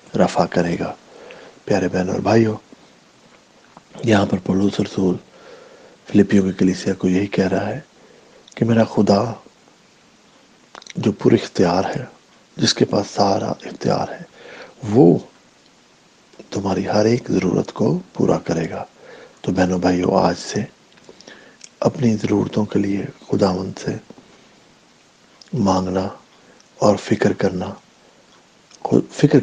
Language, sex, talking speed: English, male, 110 wpm